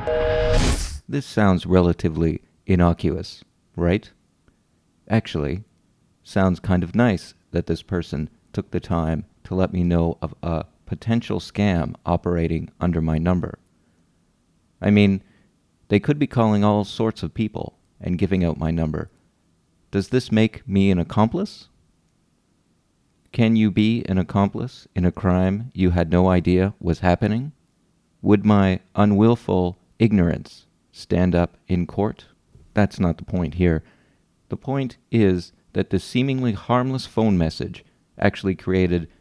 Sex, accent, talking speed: male, American, 135 wpm